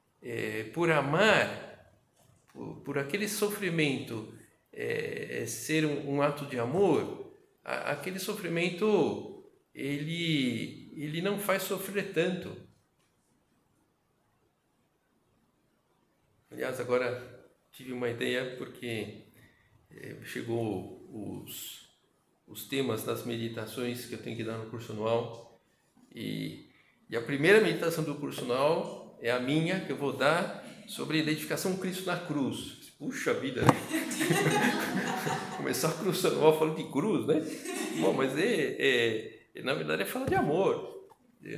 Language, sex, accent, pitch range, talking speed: Portuguese, male, Brazilian, 125-195 Hz, 125 wpm